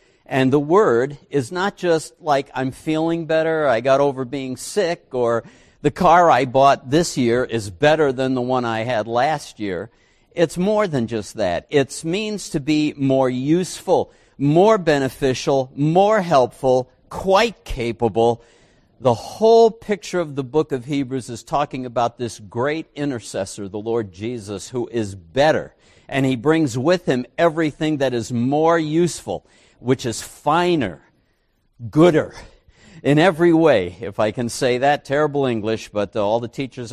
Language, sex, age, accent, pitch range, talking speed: English, male, 50-69, American, 120-165 Hz, 155 wpm